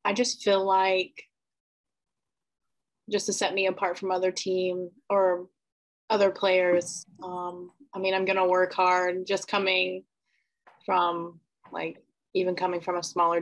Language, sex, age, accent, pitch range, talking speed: English, female, 20-39, American, 180-195 Hz, 140 wpm